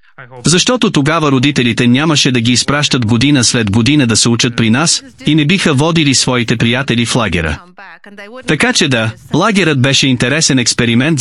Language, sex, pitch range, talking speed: Bulgarian, male, 125-165 Hz, 160 wpm